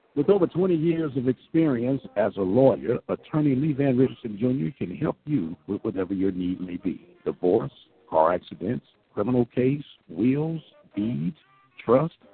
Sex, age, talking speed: male, 60-79, 150 wpm